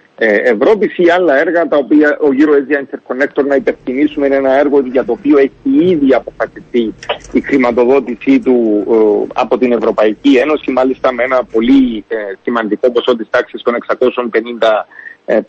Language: Greek